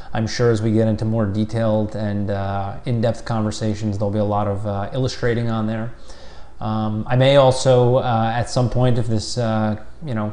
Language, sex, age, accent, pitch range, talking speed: English, male, 30-49, American, 100-115 Hz, 200 wpm